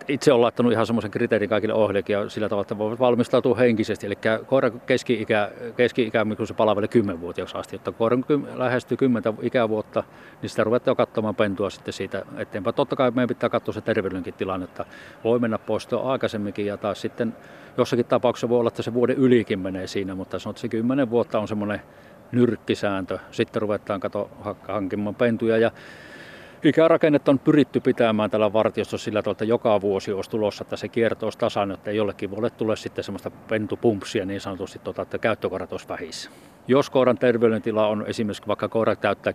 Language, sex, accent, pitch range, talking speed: Finnish, male, native, 105-120 Hz, 170 wpm